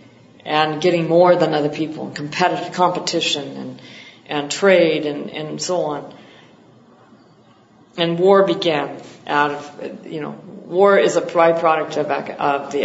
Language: English